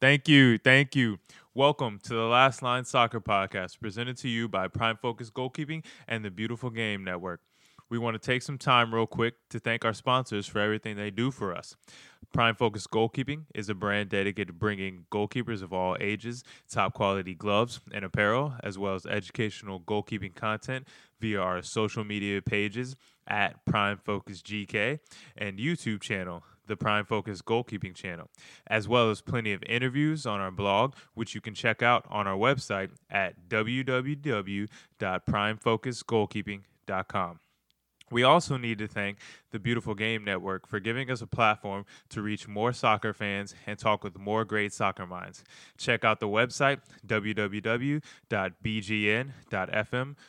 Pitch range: 105-125 Hz